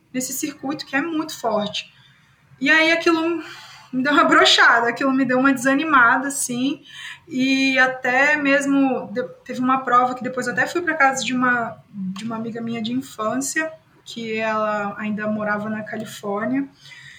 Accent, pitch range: Brazilian, 230-285 Hz